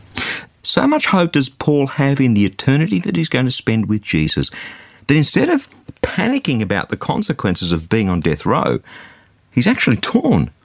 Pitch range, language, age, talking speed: 95-150 Hz, English, 50-69, 175 wpm